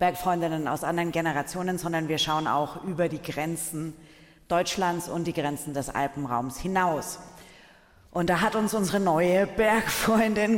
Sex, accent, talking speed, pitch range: female, German, 140 wpm, 145-170 Hz